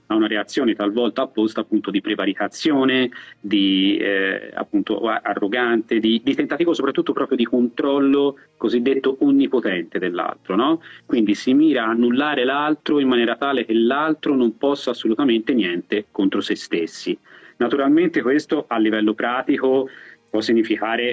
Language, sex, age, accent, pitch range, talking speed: Italian, male, 30-49, native, 110-135 Hz, 135 wpm